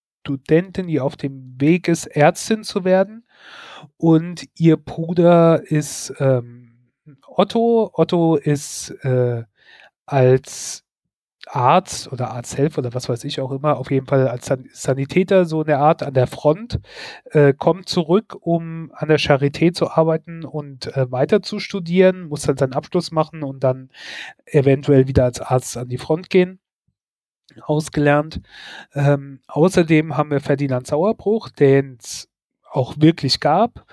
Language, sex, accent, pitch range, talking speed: German, male, German, 130-160 Hz, 145 wpm